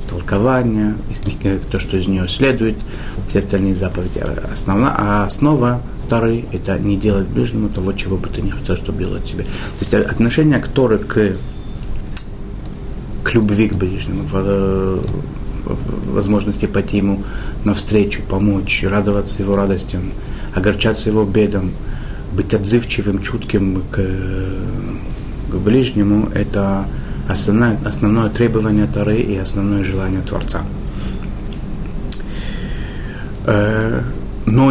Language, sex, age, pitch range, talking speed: Russian, male, 30-49, 95-110 Hz, 110 wpm